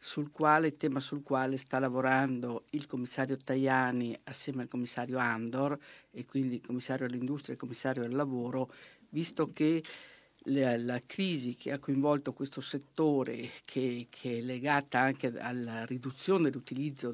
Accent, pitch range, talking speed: native, 125-140 Hz, 145 wpm